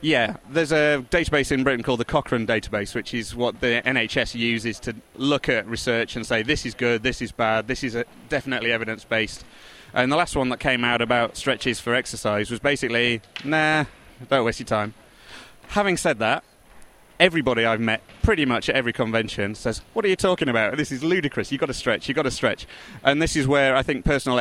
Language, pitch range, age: English, 115-140 Hz, 30-49